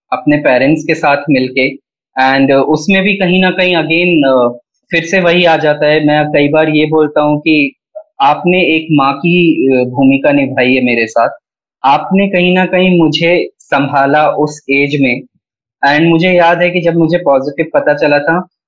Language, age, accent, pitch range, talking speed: Hindi, 20-39, native, 125-165 Hz, 175 wpm